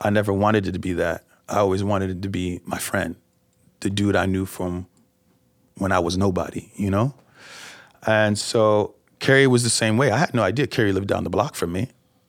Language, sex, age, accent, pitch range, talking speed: English, male, 30-49, American, 100-135 Hz, 215 wpm